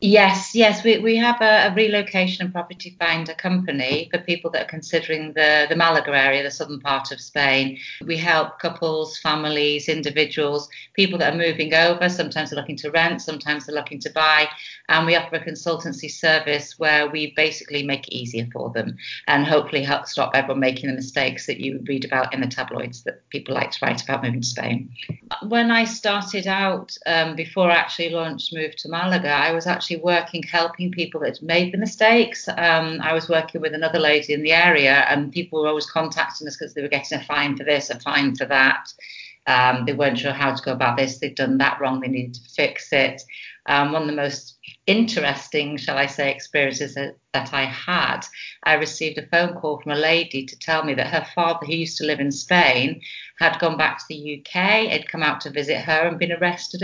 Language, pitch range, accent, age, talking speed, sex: English, 145-170 Hz, British, 40-59, 210 wpm, female